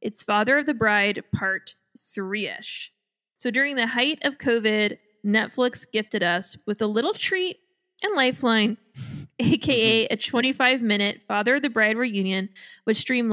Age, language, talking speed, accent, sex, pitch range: 20-39, English, 150 wpm, American, female, 205-250 Hz